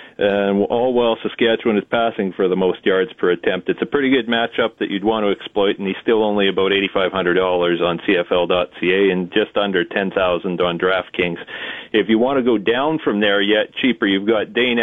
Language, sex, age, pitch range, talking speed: English, male, 40-59, 95-115 Hz, 200 wpm